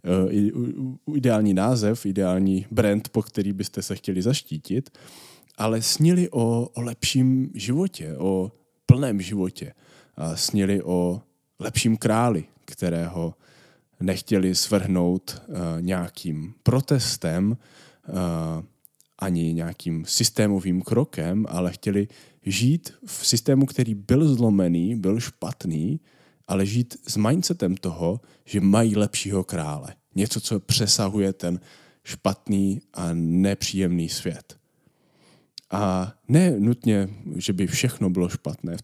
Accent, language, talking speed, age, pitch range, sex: Czech, English, 105 wpm, 20-39, 90-120 Hz, male